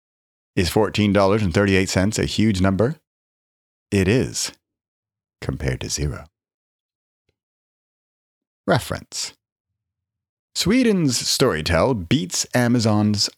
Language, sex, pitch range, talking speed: English, male, 80-110 Hz, 65 wpm